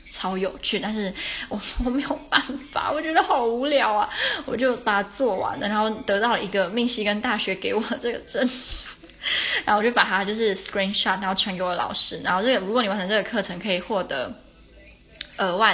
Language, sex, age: Chinese, female, 20-39